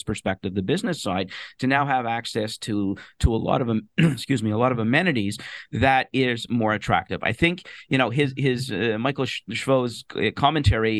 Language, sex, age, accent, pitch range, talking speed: English, male, 50-69, American, 110-135 Hz, 180 wpm